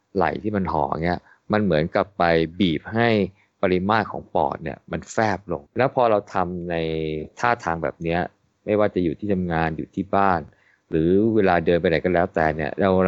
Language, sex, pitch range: Thai, male, 85-110 Hz